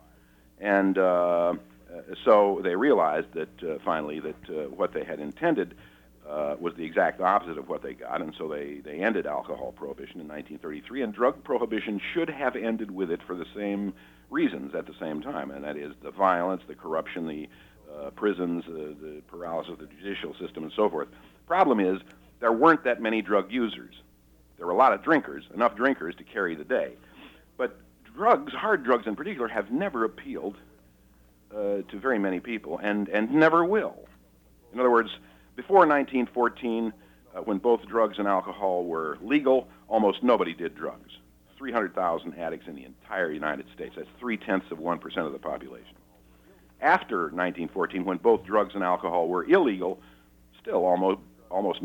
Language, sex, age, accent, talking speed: English, male, 50-69, American, 175 wpm